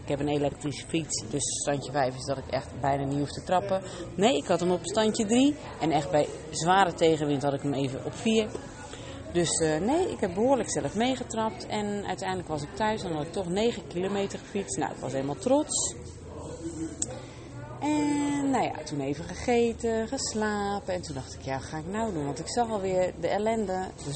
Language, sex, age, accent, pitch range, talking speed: English, female, 30-49, Dutch, 145-220 Hz, 210 wpm